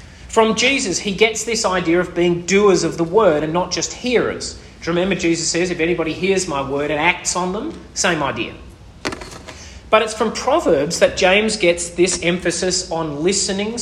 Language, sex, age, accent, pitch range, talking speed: English, male, 30-49, Australian, 155-205 Hz, 185 wpm